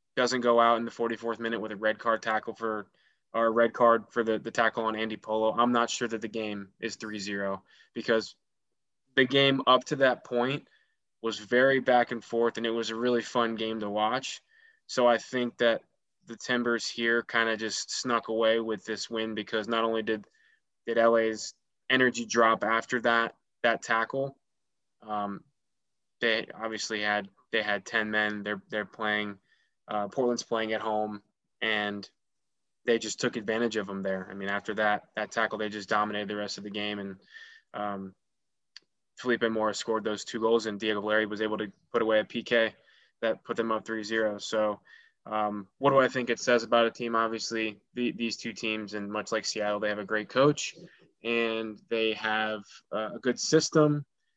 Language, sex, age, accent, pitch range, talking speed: English, male, 20-39, American, 105-120 Hz, 190 wpm